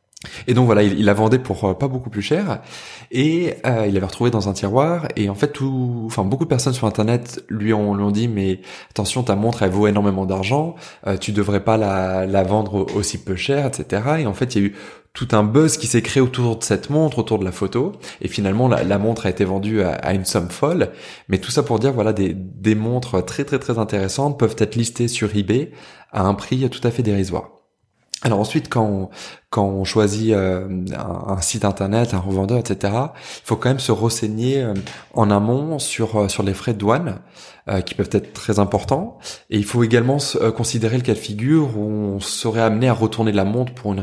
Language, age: French, 20-39